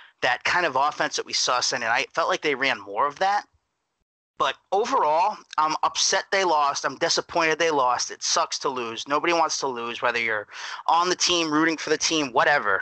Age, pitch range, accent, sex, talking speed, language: 30-49, 145-175 Hz, American, male, 210 wpm, English